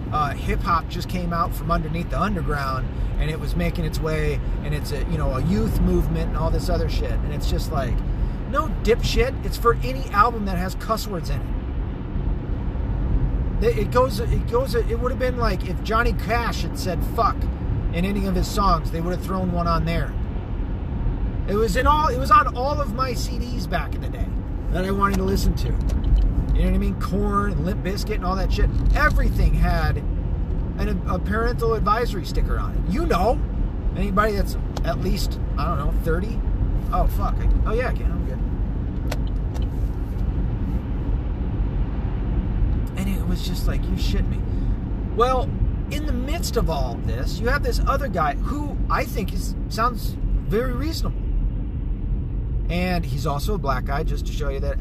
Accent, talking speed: American, 190 wpm